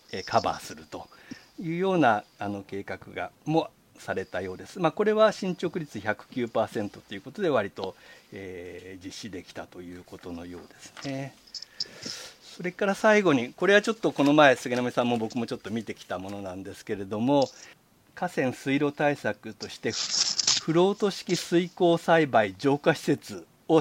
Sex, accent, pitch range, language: male, native, 110-165 Hz, Japanese